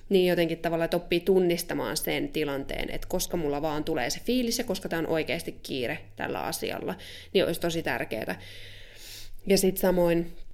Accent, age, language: native, 20-39, Finnish